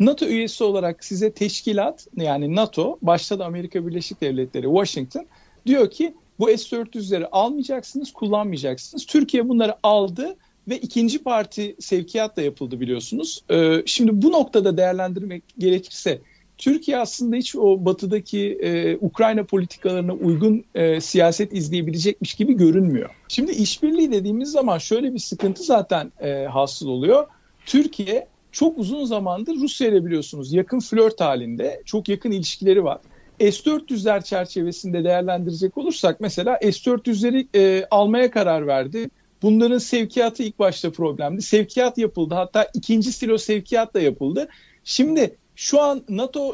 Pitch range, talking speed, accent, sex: 180-240 Hz, 130 wpm, native, male